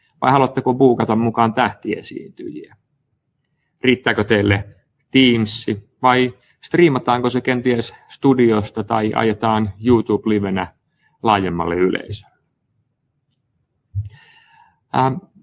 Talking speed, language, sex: 70 wpm, Finnish, male